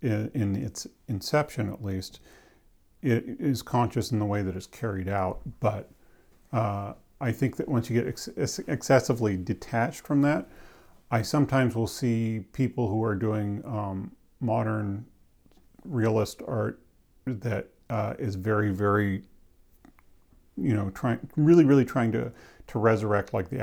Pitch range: 100-115 Hz